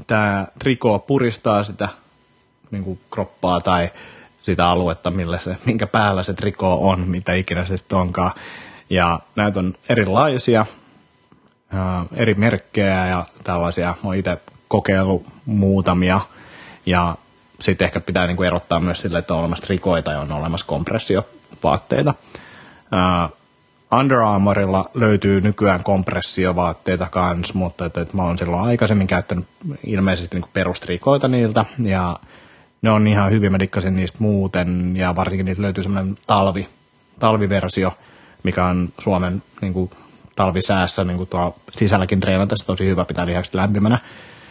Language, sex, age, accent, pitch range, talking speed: Finnish, male, 30-49, native, 90-105 Hz, 135 wpm